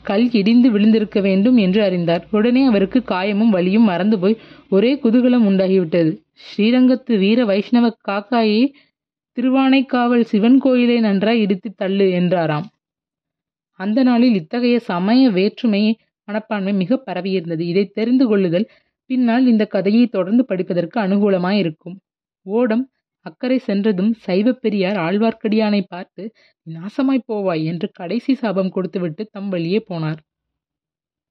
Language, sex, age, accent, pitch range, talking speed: Tamil, female, 30-49, native, 185-240 Hz, 110 wpm